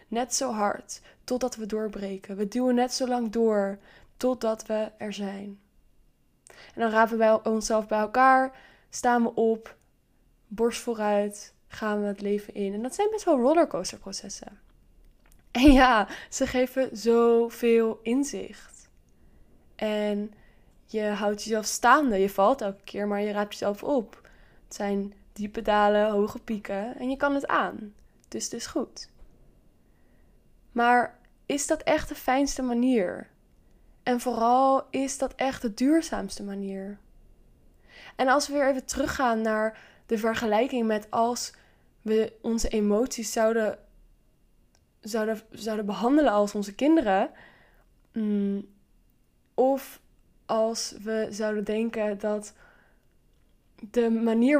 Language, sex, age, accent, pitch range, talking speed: Dutch, female, 10-29, Dutch, 210-255 Hz, 130 wpm